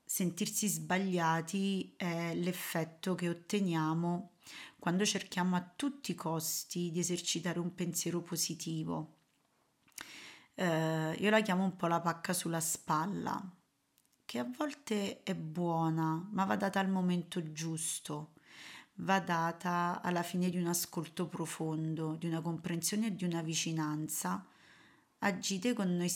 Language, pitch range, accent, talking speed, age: Italian, 165-185 Hz, native, 130 wpm, 30-49